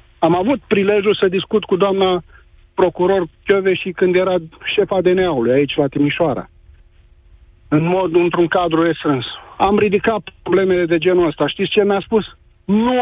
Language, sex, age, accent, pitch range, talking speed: Romanian, male, 40-59, native, 160-205 Hz, 150 wpm